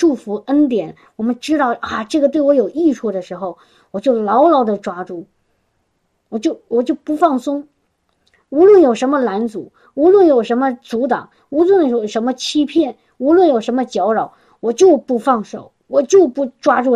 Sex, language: male, Chinese